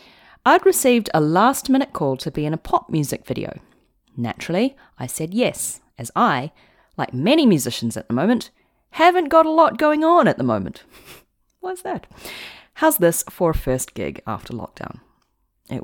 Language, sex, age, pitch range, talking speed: English, female, 30-49, 150-250 Hz, 165 wpm